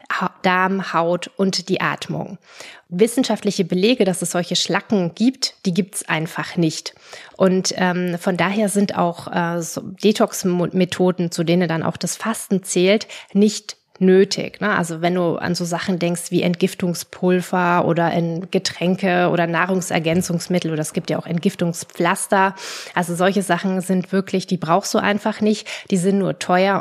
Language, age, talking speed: German, 20-39, 150 wpm